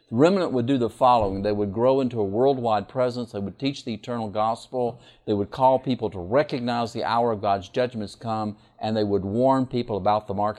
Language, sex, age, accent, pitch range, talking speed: English, male, 50-69, American, 105-130 Hz, 215 wpm